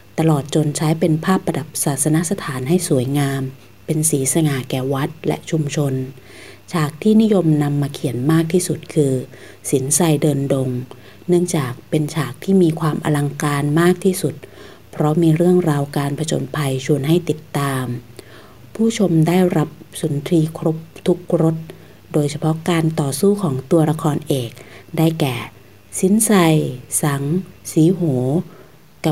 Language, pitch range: Thai, 140-165 Hz